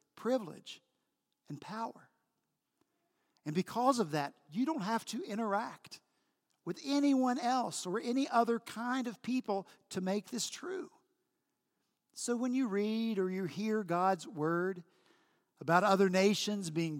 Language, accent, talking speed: English, American, 135 wpm